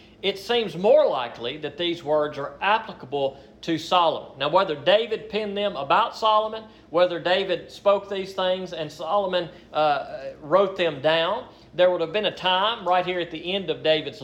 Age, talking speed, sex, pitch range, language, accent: 40-59, 175 wpm, male, 145-180 Hz, English, American